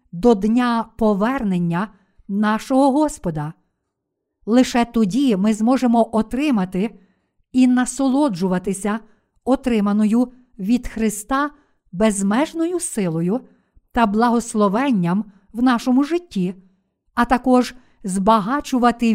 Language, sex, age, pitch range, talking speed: Ukrainian, female, 50-69, 200-260 Hz, 80 wpm